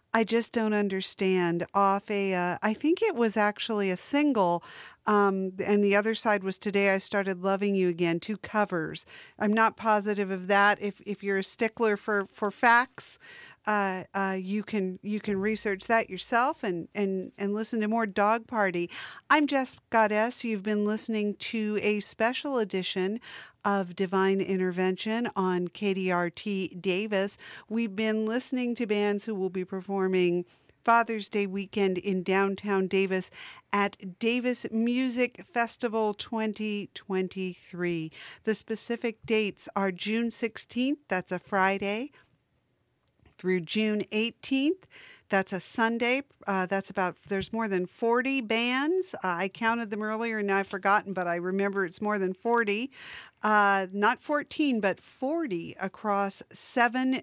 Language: English